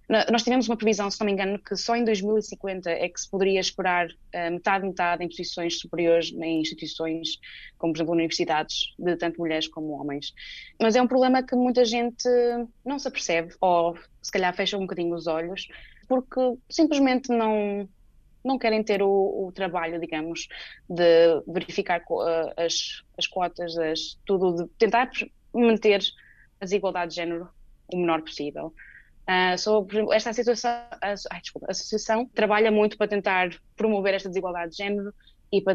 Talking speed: 155 wpm